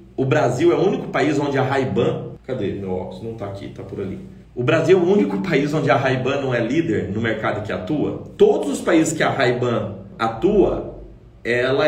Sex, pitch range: male, 120-155 Hz